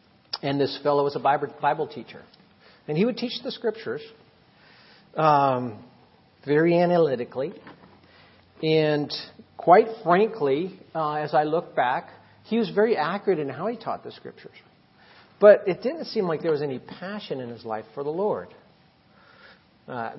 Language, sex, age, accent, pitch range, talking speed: English, male, 50-69, American, 130-175 Hz, 150 wpm